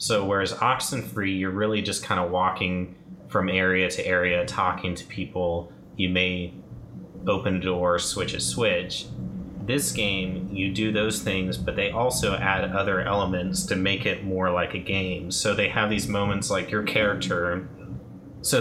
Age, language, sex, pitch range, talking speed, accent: 30-49, English, male, 90-100 Hz, 165 wpm, American